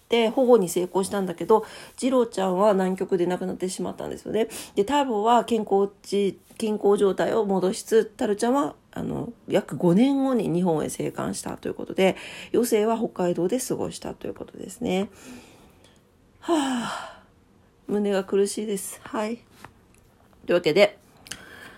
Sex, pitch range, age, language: female, 170-230 Hz, 40-59, Japanese